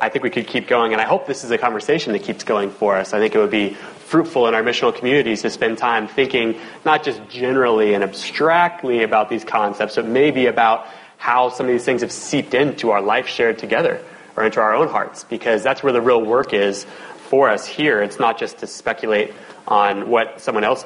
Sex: male